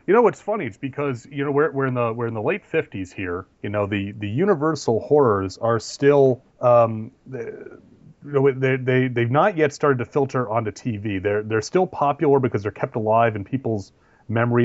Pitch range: 105-135 Hz